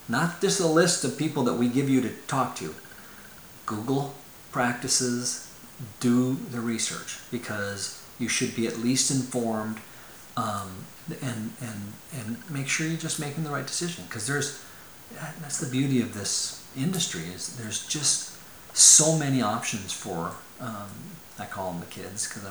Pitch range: 115-150 Hz